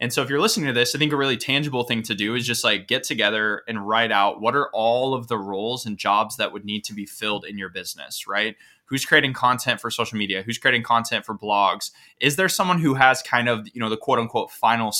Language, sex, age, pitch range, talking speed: English, male, 20-39, 105-130 Hz, 260 wpm